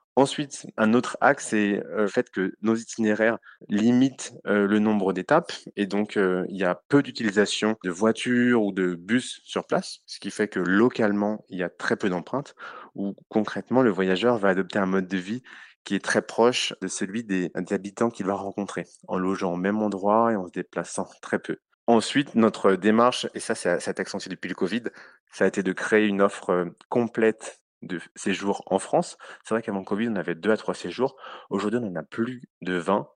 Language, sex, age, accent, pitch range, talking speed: French, male, 30-49, French, 95-115 Hz, 205 wpm